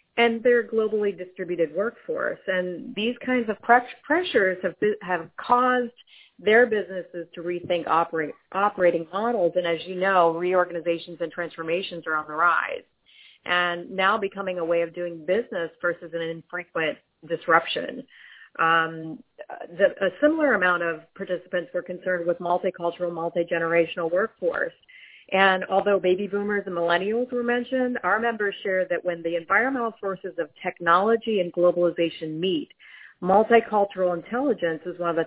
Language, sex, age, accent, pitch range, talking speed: English, female, 30-49, American, 175-220 Hz, 140 wpm